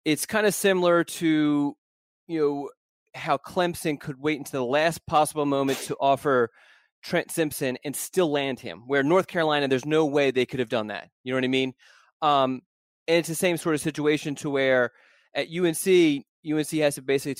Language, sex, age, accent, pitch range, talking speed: English, male, 20-39, American, 130-150 Hz, 195 wpm